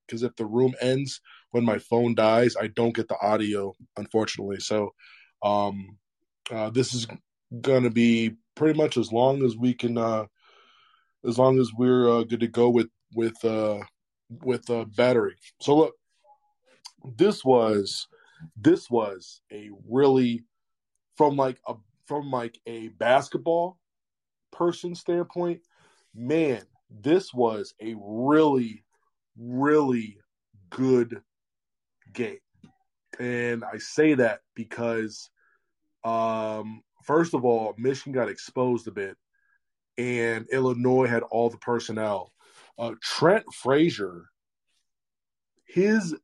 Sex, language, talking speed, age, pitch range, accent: male, English, 120 wpm, 20-39, 115-140 Hz, American